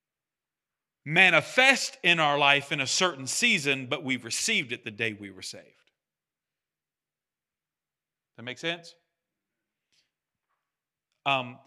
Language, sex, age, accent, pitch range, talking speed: English, male, 40-59, American, 130-170 Hz, 110 wpm